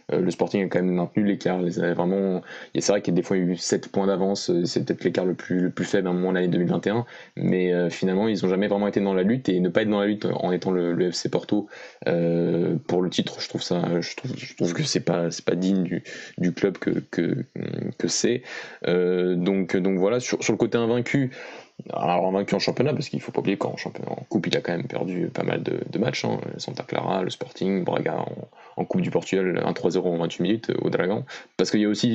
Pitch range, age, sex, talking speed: 90-100 Hz, 20-39, male, 255 wpm